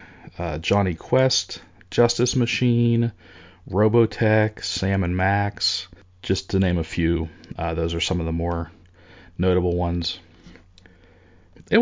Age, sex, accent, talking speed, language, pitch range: 40-59, male, American, 120 wpm, English, 90-120 Hz